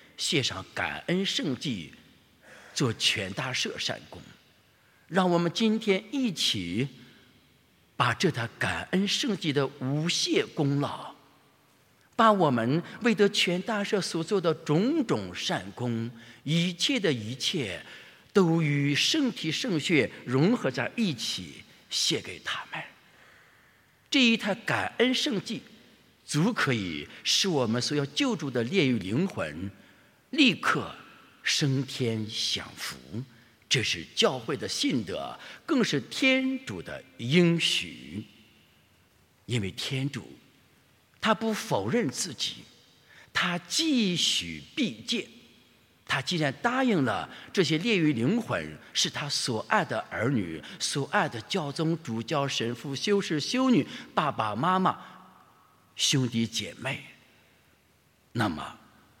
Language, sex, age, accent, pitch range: English, male, 50-69, Chinese, 125-205 Hz